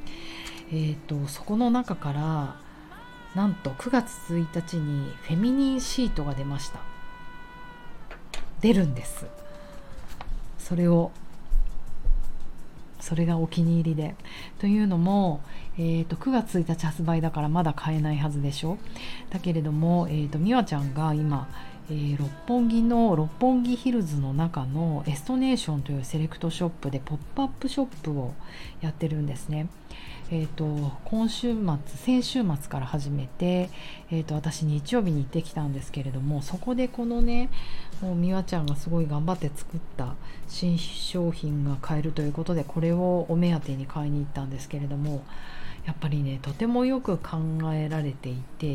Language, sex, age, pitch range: Japanese, female, 40-59, 145-180 Hz